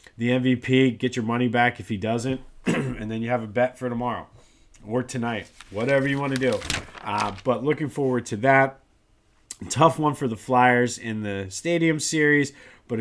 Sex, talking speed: male, 185 wpm